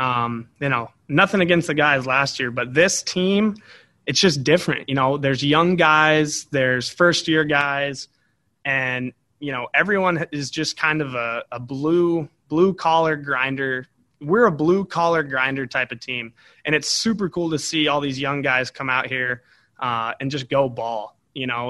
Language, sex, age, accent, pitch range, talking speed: English, male, 20-39, American, 125-155 Hz, 185 wpm